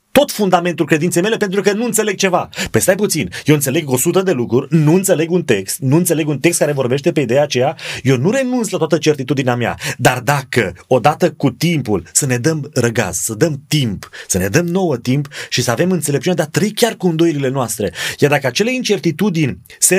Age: 30-49